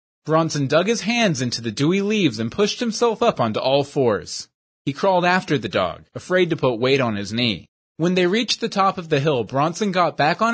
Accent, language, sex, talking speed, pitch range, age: American, English, male, 220 wpm, 130-195 Hz, 20-39